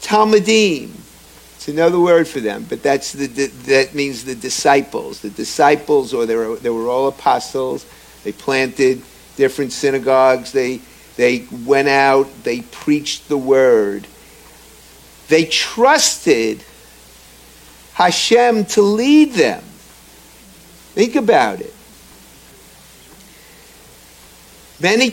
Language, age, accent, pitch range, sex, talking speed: English, 50-69, American, 125-180 Hz, male, 105 wpm